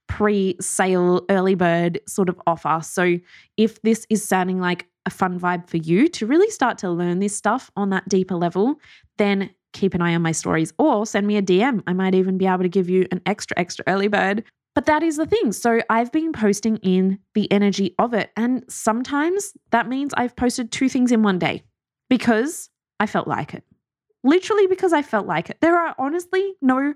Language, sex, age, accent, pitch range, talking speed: English, female, 20-39, Australian, 190-250 Hz, 205 wpm